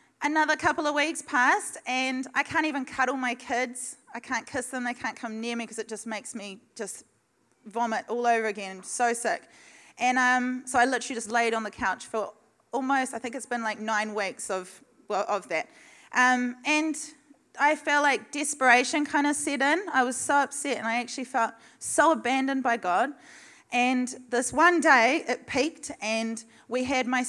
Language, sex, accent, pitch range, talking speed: English, female, Australian, 225-275 Hz, 195 wpm